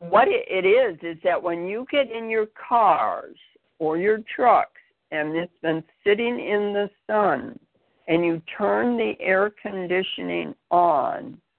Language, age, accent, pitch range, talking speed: English, 60-79, American, 160-210 Hz, 145 wpm